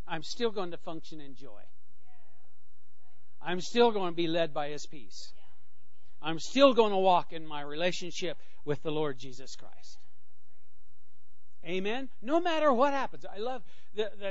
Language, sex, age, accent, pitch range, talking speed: English, male, 60-79, American, 125-190 Hz, 155 wpm